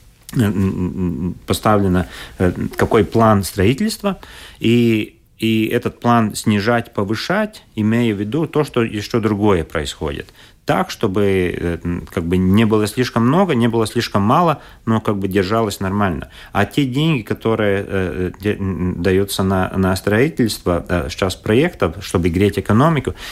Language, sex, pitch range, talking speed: Russian, male, 90-115 Hz, 125 wpm